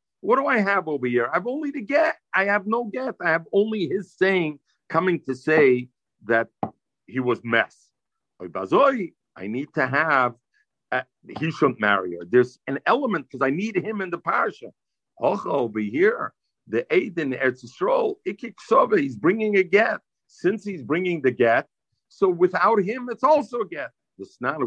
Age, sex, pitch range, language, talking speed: 50-69, male, 120-195 Hz, English, 175 wpm